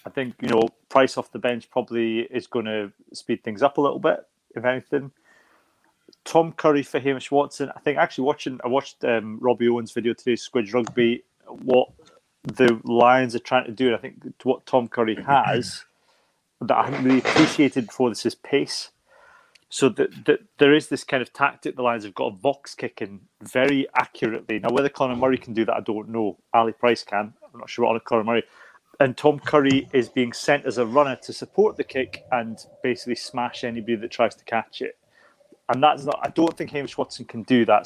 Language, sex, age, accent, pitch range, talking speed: English, male, 30-49, British, 115-135 Hz, 210 wpm